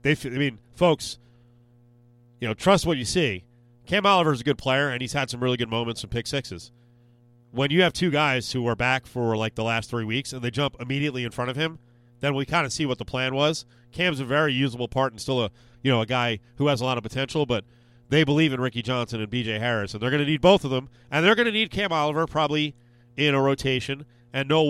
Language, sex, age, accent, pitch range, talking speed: English, male, 40-59, American, 120-150 Hz, 255 wpm